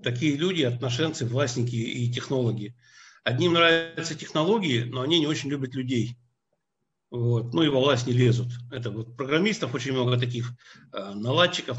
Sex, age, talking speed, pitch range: male, 50-69, 150 wpm, 120-145 Hz